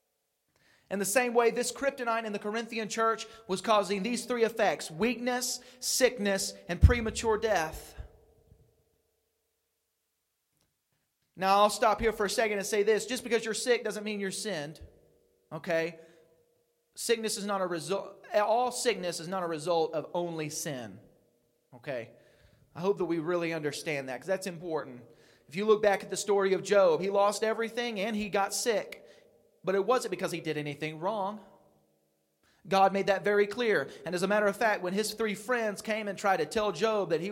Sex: male